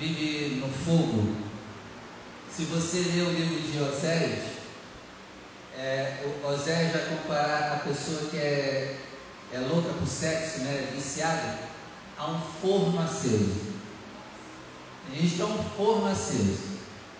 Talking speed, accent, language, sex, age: 110 wpm, Brazilian, Portuguese, male, 40-59